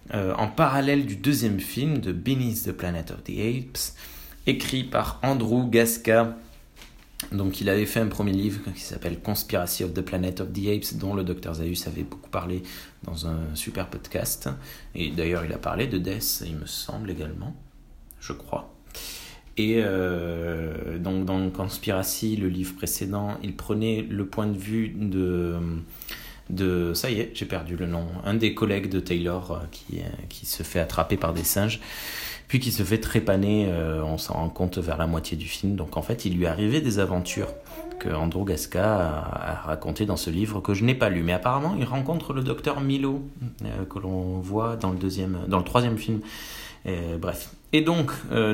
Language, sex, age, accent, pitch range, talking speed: French, male, 30-49, French, 85-115 Hz, 190 wpm